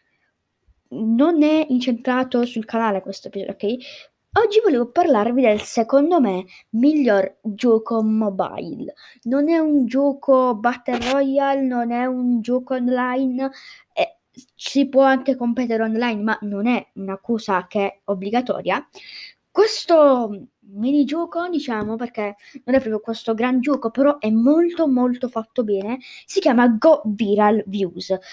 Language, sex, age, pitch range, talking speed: Italian, female, 20-39, 210-275 Hz, 135 wpm